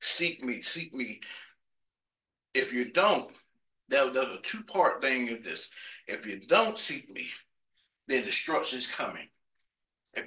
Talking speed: 145 wpm